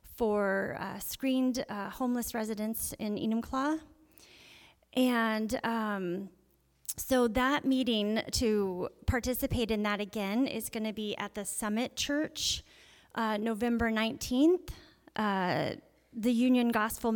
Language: English